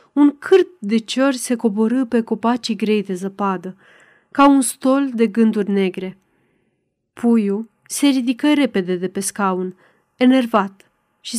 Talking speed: 135 wpm